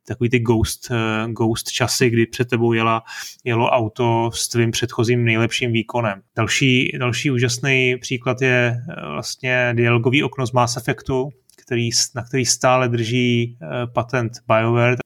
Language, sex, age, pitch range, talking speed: Czech, male, 20-39, 115-130 Hz, 130 wpm